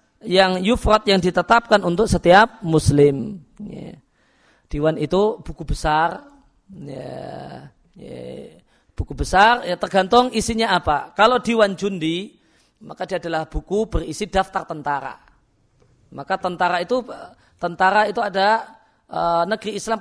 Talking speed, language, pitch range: 115 wpm, Indonesian, 160-215 Hz